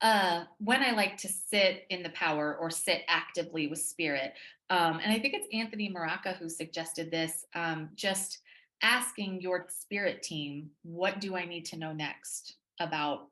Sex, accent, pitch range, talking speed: female, American, 155-185 Hz, 170 wpm